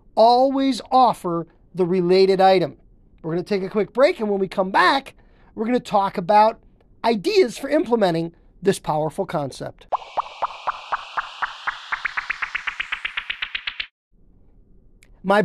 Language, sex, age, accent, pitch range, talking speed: English, male, 40-59, American, 185-255 Hz, 105 wpm